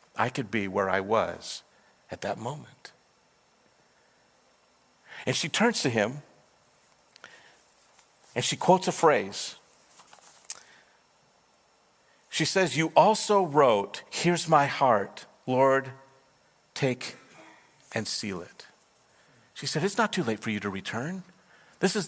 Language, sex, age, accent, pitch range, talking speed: English, male, 50-69, American, 105-160 Hz, 120 wpm